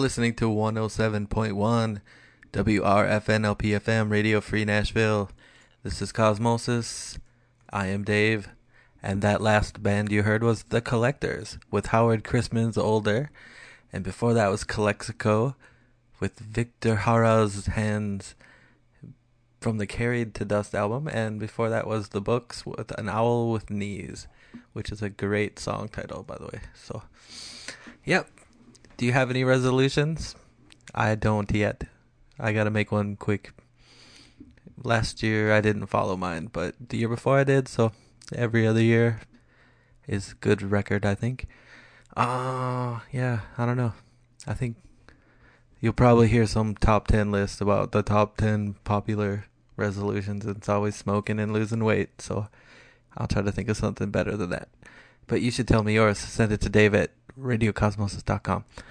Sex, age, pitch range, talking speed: male, 20-39, 105-120 Hz, 150 wpm